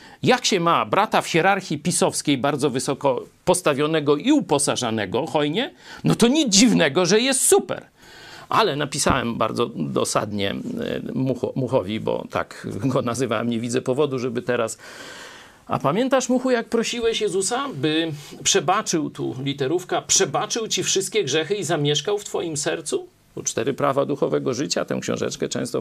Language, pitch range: Polish, 140-225 Hz